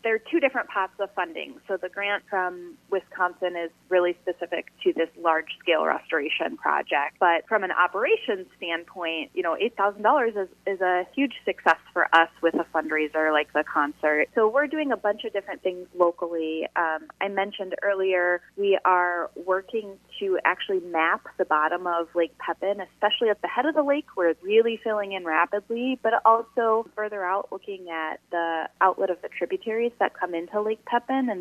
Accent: American